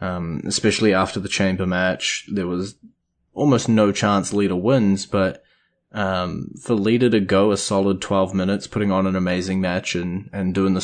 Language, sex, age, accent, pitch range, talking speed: English, male, 20-39, Australian, 95-105 Hz, 175 wpm